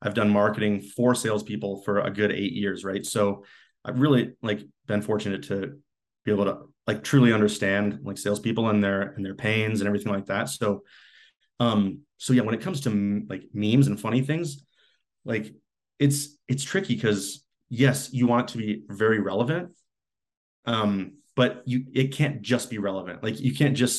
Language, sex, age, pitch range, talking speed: English, male, 30-49, 100-125 Hz, 180 wpm